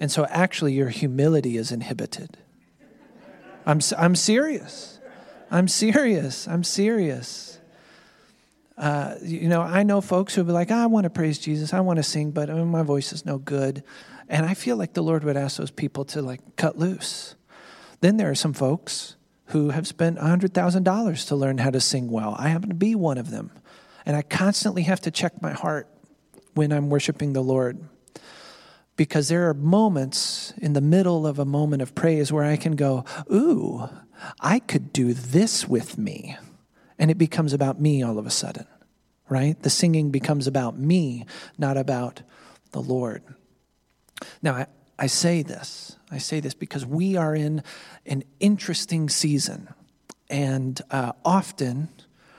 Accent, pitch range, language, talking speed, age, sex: American, 140-175 Hz, English, 170 wpm, 40-59, male